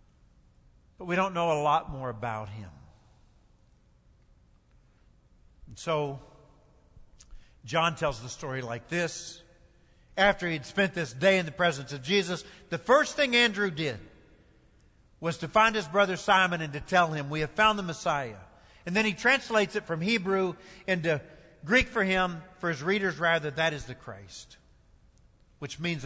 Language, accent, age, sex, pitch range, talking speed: English, American, 50-69, male, 150-195 Hz, 160 wpm